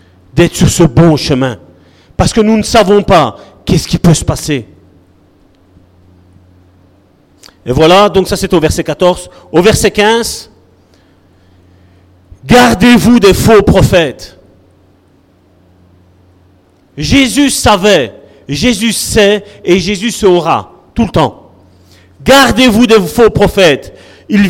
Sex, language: male, French